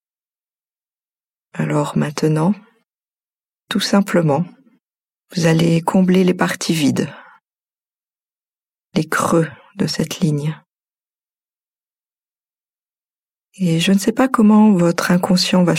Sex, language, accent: female, French, French